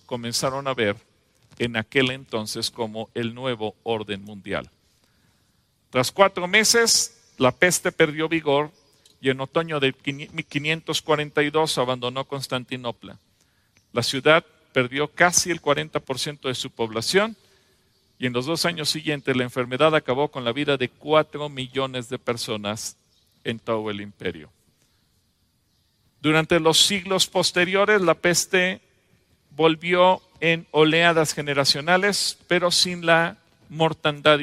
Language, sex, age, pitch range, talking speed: English, male, 40-59, 125-160 Hz, 120 wpm